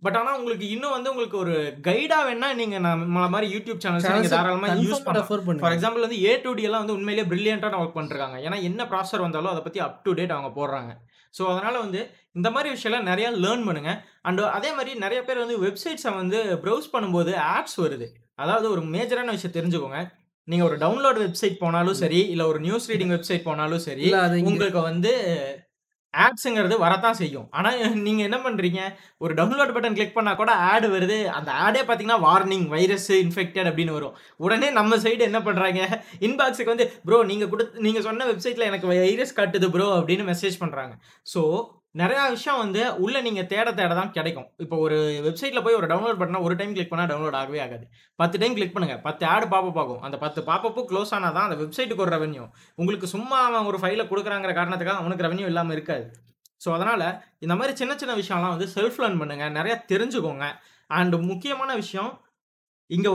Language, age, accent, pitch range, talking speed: Tamil, 20-39, native, 170-225 Hz, 160 wpm